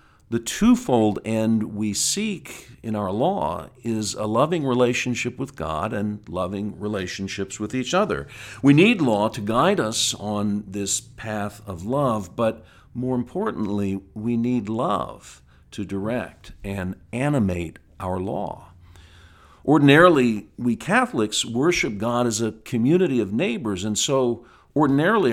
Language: English